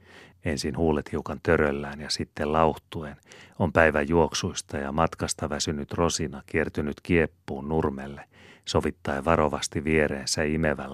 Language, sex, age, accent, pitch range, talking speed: Finnish, male, 40-59, native, 70-85 Hz, 115 wpm